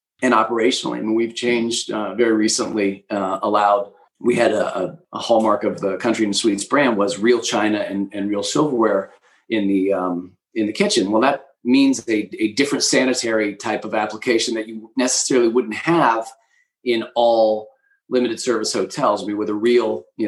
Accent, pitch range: American, 105-120 Hz